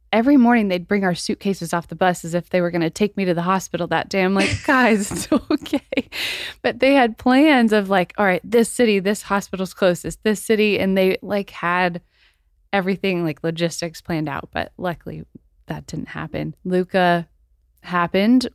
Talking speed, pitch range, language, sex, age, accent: 190 wpm, 165-200 Hz, English, female, 20-39, American